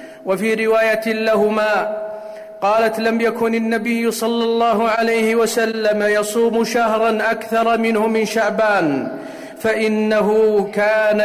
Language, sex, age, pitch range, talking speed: Arabic, male, 50-69, 210-225 Hz, 100 wpm